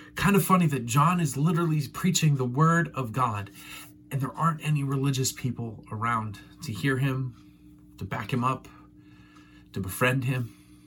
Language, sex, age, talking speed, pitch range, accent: English, male, 30-49, 160 wpm, 105-145 Hz, American